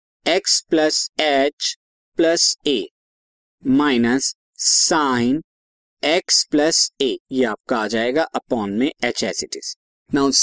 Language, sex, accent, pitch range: Hindi, male, native, 130-180 Hz